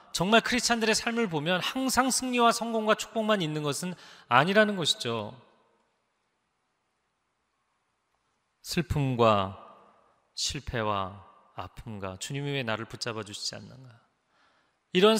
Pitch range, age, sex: 120-200 Hz, 30-49, male